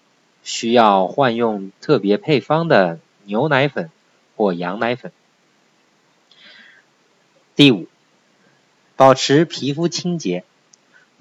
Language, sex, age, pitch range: Chinese, male, 50-69, 105-155 Hz